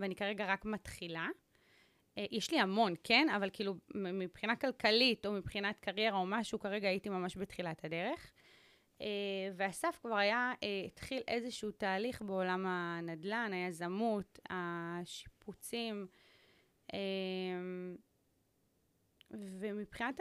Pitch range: 180-230 Hz